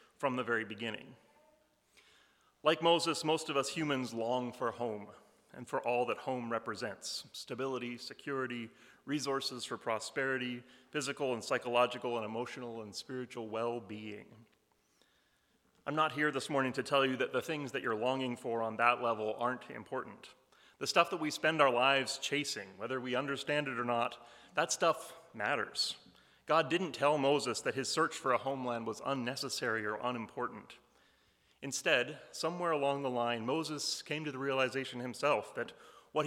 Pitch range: 120-145 Hz